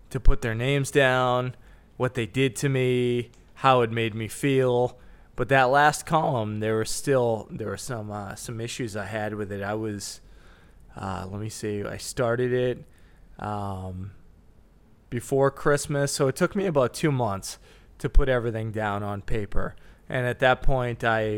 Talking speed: 175 wpm